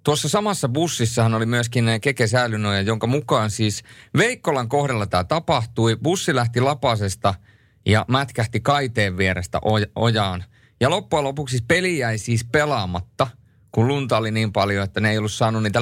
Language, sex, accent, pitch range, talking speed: Finnish, male, native, 110-145 Hz, 150 wpm